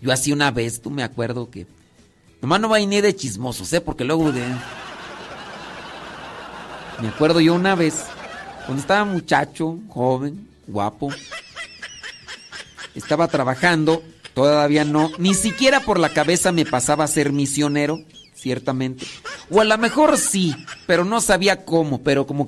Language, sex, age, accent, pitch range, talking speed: Spanish, male, 50-69, Mexican, 130-185 Hz, 145 wpm